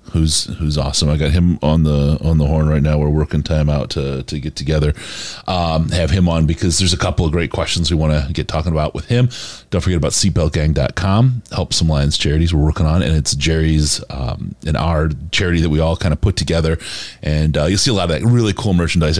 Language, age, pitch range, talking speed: English, 30-49, 80-105 Hz, 240 wpm